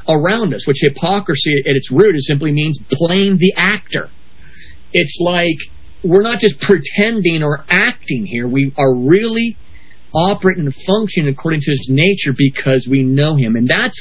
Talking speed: 165 wpm